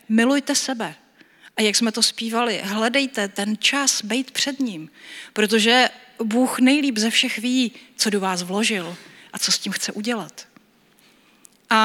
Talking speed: 150 wpm